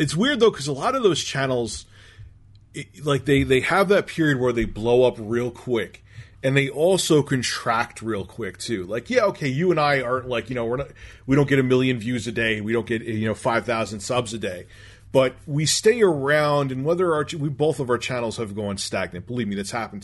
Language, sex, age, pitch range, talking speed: English, male, 30-49, 100-135 Hz, 235 wpm